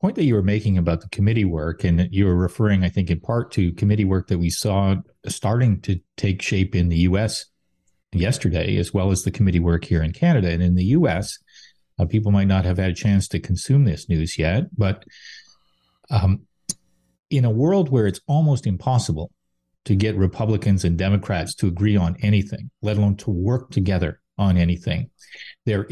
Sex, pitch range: male, 95-125 Hz